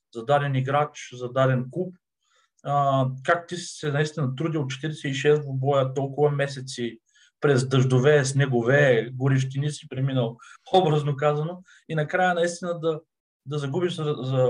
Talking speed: 145 wpm